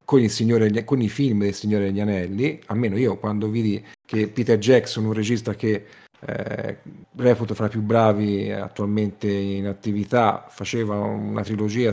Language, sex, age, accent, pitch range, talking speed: Italian, male, 40-59, native, 105-135 Hz, 160 wpm